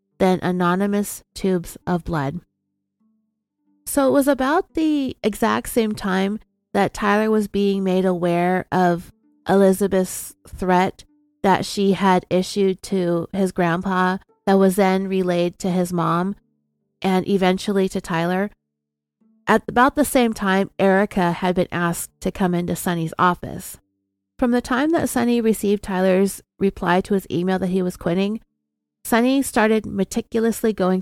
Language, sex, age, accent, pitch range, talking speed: English, female, 30-49, American, 180-215 Hz, 140 wpm